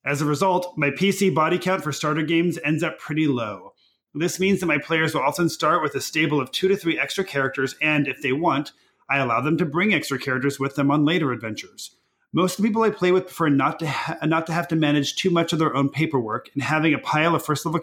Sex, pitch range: male, 140-170 Hz